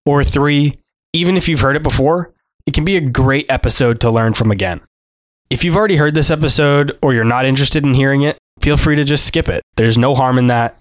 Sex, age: male, 20-39